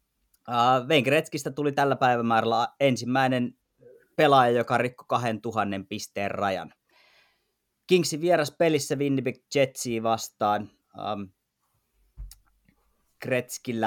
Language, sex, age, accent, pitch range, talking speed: Finnish, male, 30-49, native, 105-130 Hz, 85 wpm